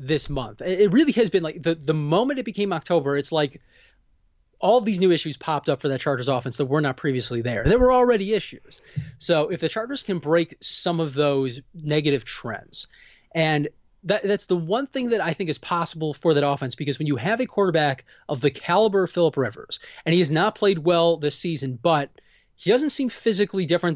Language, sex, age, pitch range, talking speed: English, male, 20-39, 145-190 Hz, 215 wpm